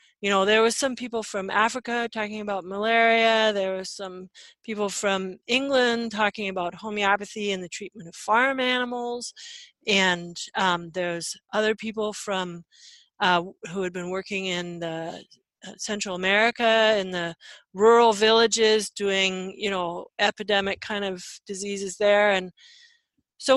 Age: 40-59